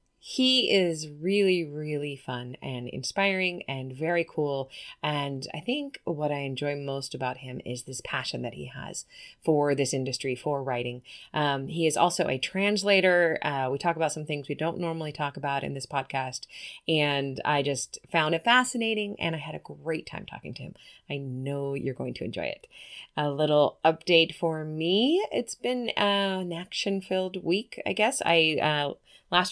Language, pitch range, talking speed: English, 140-180 Hz, 180 wpm